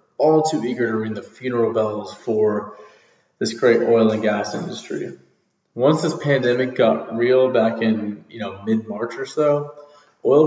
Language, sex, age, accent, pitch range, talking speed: English, male, 20-39, American, 110-130 Hz, 160 wpm